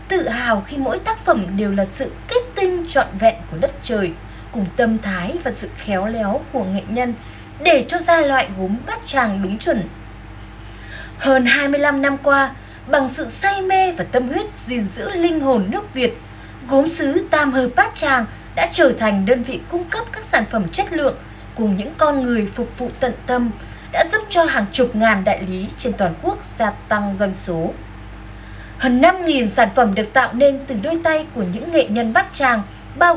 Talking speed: 200 wpm